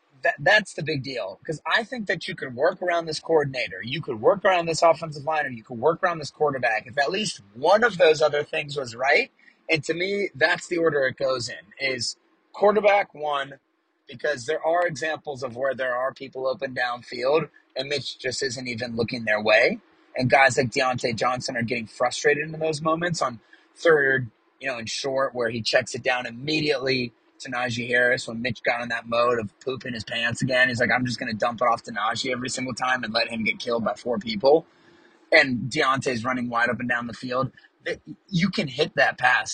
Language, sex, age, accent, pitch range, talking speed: English, male, 30-49, American, 125-160 Hz, 215 wpm